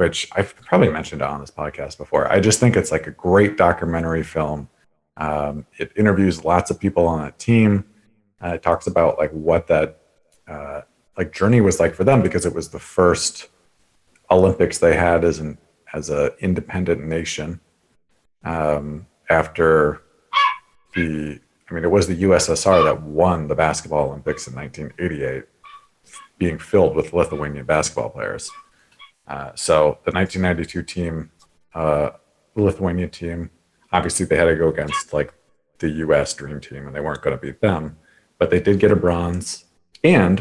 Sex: male